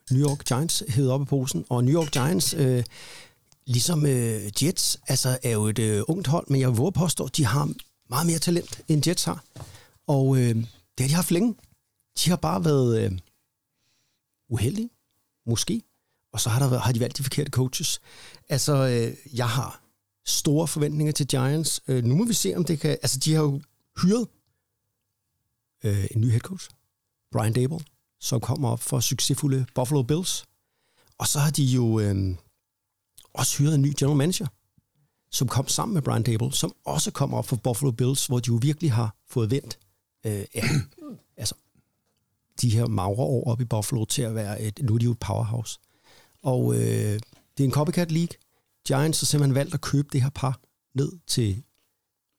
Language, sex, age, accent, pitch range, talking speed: Danish, male, 60-79, native, 115-145 Hz, 190 wpm